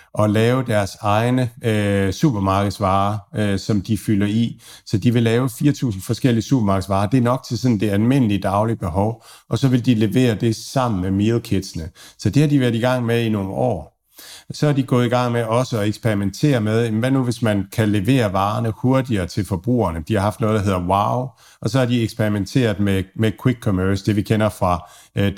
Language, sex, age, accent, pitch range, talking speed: Danish, male, 50-69, native, 100-120 Hz, 210 wpm